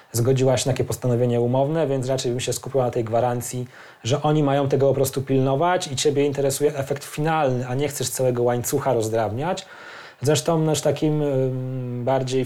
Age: 20-39